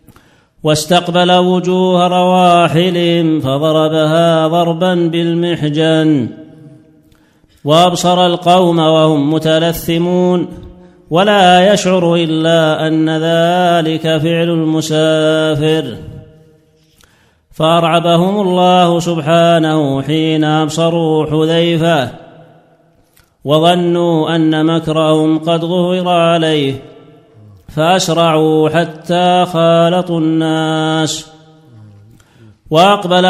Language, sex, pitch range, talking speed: Arabic, male, 155-175 Hz, 60 wpm